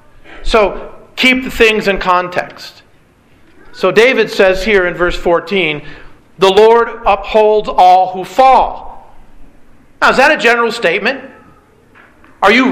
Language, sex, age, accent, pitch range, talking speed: English, male, 40-59, American, 185-225 Hz, 125 wpm